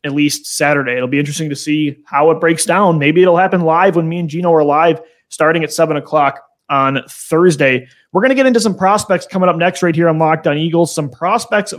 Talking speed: 235 wpm